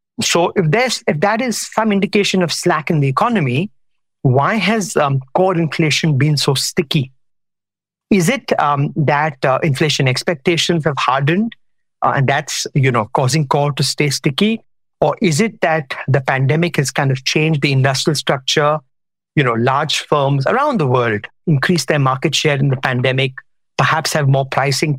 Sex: male